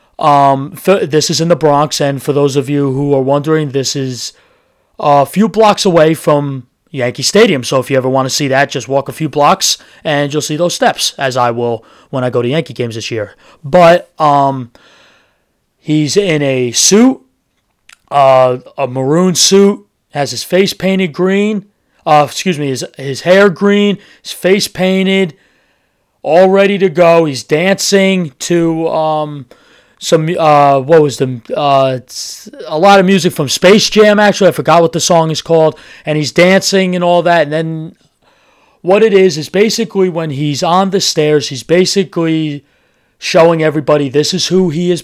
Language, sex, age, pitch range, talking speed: English, male, 30-49, 140-185 Hz, 180 wpm